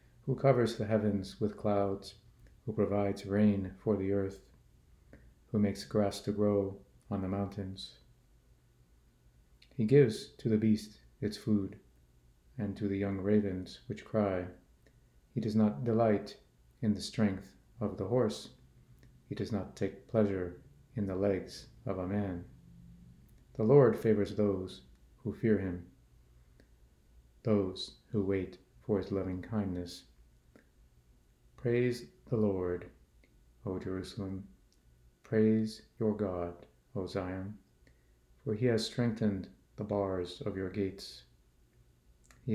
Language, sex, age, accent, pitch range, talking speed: English, male, 50-69, American, 85-110 Hz, 125 wpm